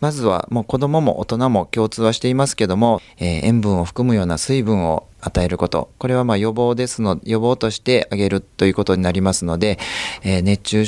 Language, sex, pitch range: Japanese, male, 90-115 Hz